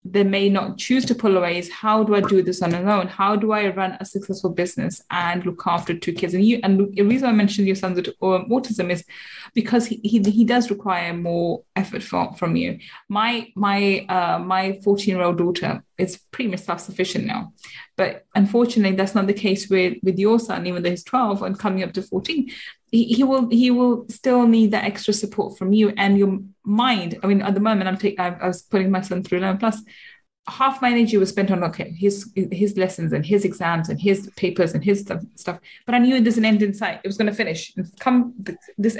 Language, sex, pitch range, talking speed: English, female, 190-225 Hz, 230 wpm